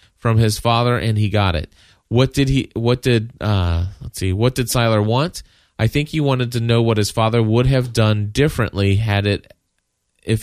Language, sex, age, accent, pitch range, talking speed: English, male, 30-49, American, 100-125 Hz, 200 wpm